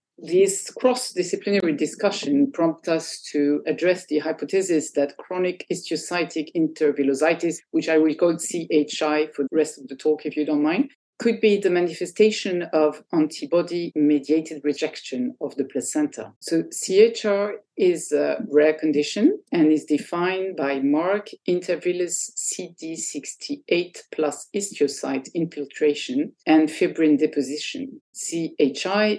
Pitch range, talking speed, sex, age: 145-215 Hz, 120 wpm, female, 50-69